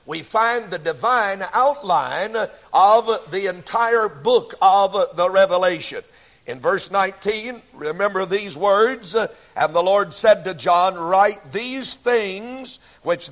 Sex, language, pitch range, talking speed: male, English, 195-250 Hz, 125 wpm